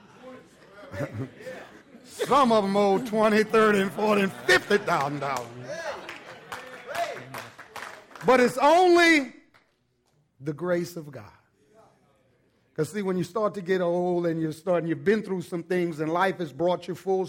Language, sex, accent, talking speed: English, male, American, 130 wpm